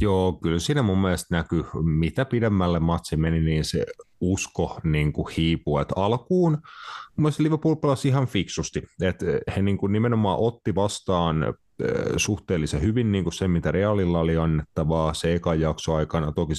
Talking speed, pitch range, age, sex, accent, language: 155 wpm, 75-95 Hz, 30-49, male, native, Finnish